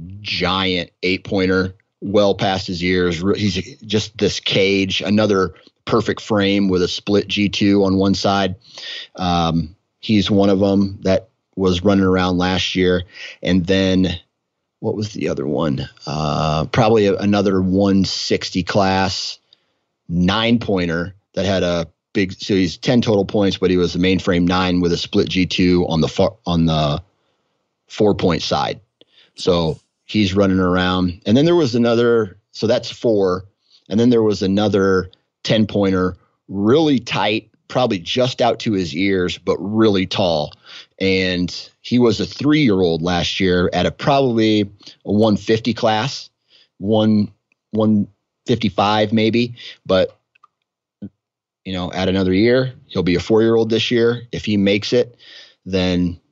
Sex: male